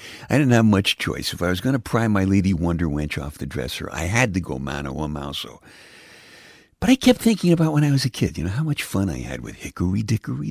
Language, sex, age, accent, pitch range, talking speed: English, male, 60-79, American, 85-125 Hz, 255 wpm